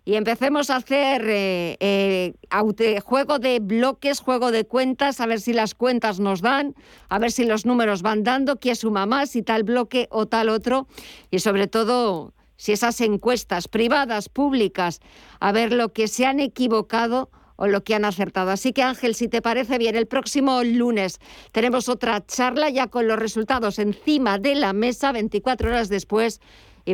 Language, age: Spanish, 50-69